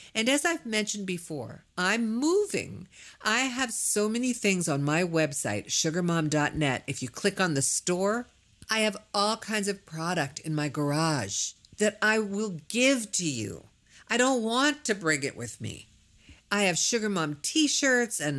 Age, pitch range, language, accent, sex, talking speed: 50-69, 150-215 Hz, English, American, female, 165 wpm